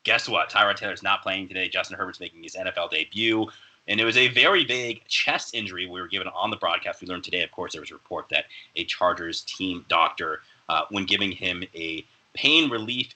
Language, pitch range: English, 95-115 Hz